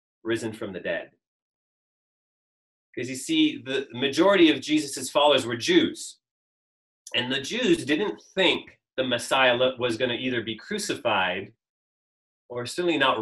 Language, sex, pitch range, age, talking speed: English, male, 110-155 Hz, 30-49, 135 wpm